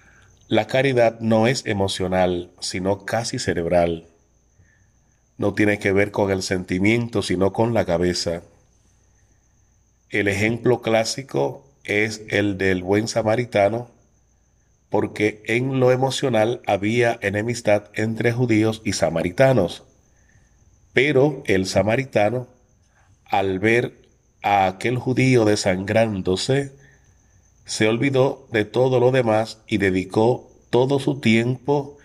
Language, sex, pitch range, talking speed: English, male, 100-120 Hz, 105 wpm